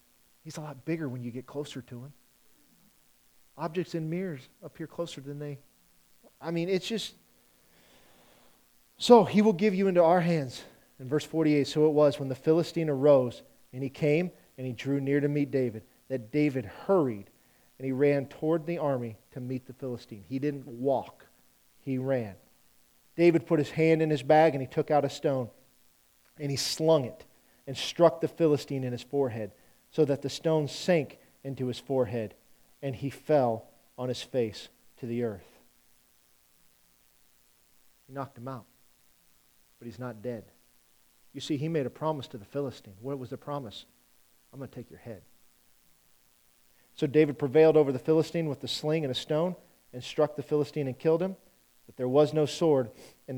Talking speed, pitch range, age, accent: 180 wpm, 125-155 Hz, 40-59, American